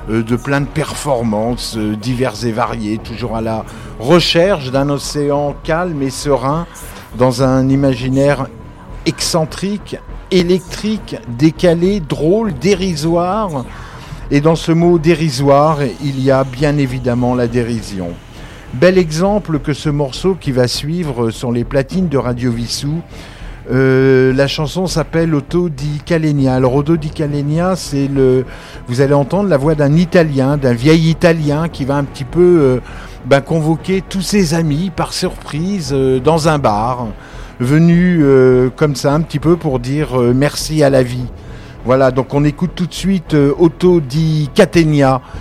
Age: 50-69